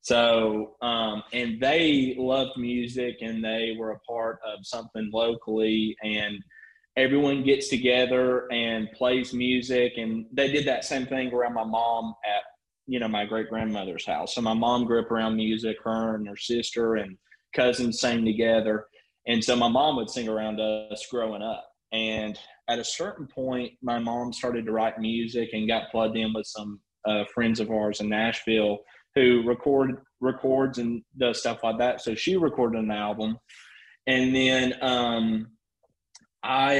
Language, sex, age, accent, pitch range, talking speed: English, male, 20-39, American, 110-125 Hz, 165 wpm